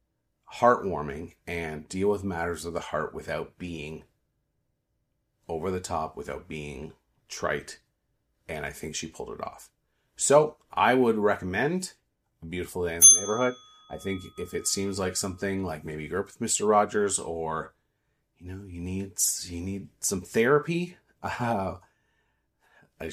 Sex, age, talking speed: male, 30-49, 150 wpm